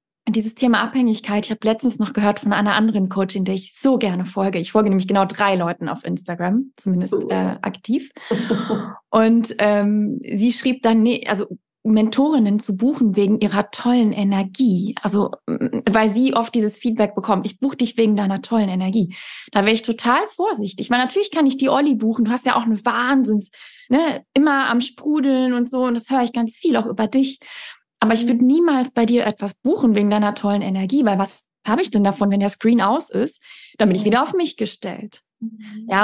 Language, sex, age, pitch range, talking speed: German, female, 20-39, 205-250 Hz, 200 wpm